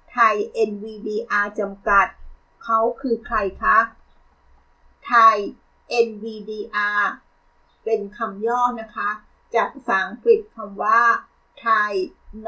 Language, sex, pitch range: Thai, female, 215-275 Hz